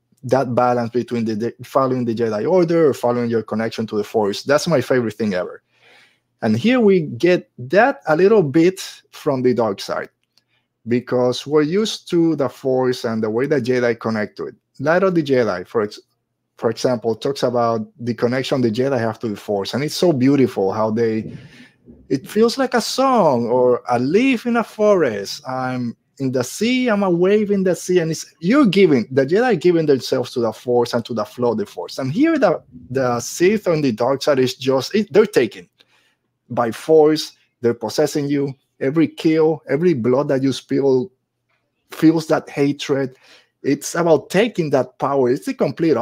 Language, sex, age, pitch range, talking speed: English, male, 30-49, 120-170 Hz, 190 wpm